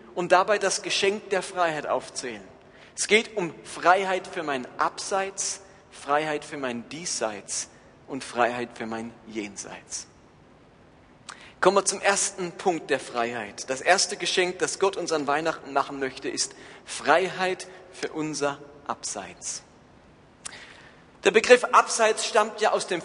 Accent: German